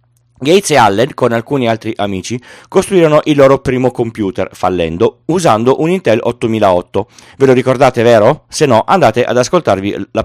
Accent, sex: native, male